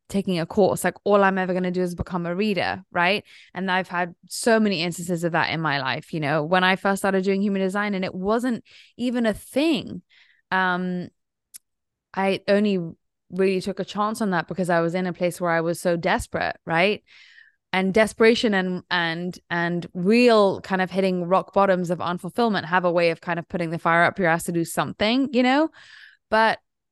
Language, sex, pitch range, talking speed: English, female, 175-210 Hz, 205 wpm